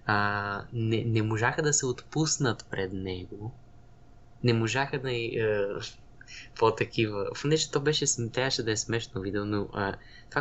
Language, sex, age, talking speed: Bulgarian, male, 20-39, 145 wpm